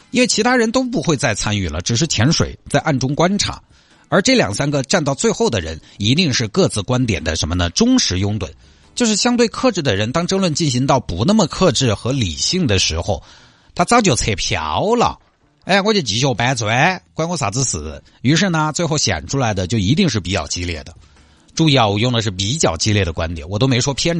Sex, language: male, Chinese